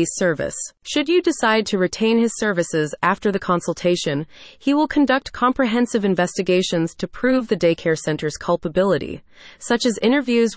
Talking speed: 140 wpm